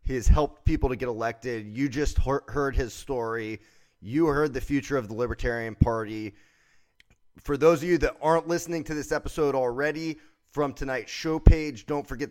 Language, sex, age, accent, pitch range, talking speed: English, male, 30-49, American, 125-150 Hz, 180 wpm